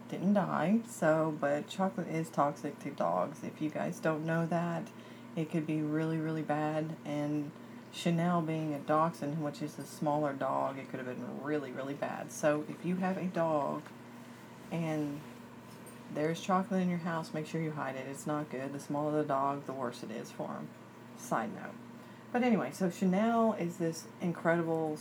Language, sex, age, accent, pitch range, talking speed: English, female, 30-49, American, 150-180 Hz, 185 wpm